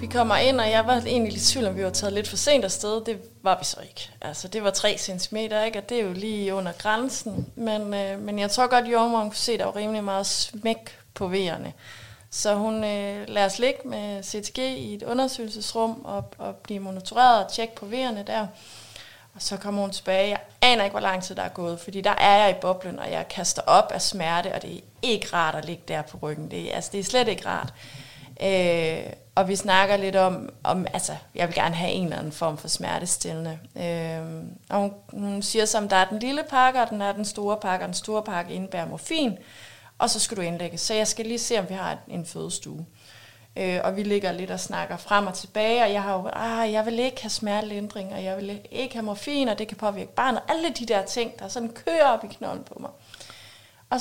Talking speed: 240 wpm